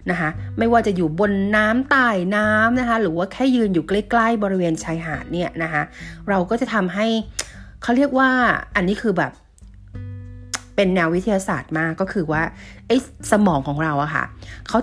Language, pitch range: Thai, 155-205 Hz